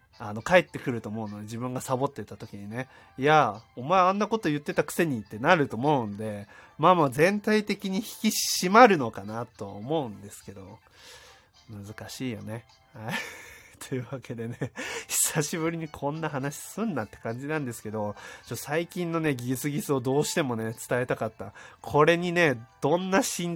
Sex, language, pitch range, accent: male, Japanese, 110-165 Hz, native